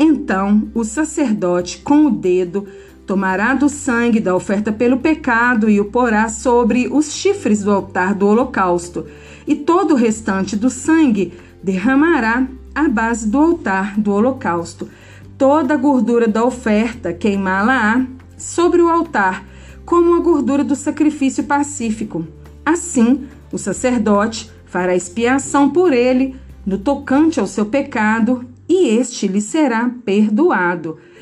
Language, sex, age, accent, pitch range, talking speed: Portuguese, female, 40-59, Brazilian, 205-300 Hz, 130 wpm